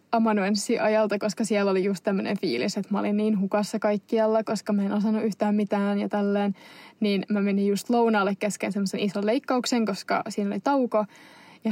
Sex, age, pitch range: female, 20-39, 205-235 Hz